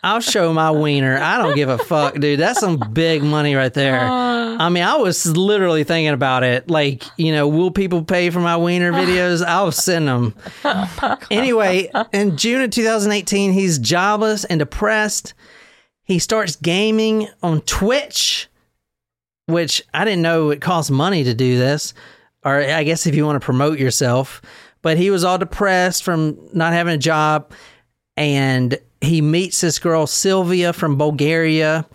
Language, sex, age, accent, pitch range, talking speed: English, male, 40-59, American, 135-180 Hz, 165 wpm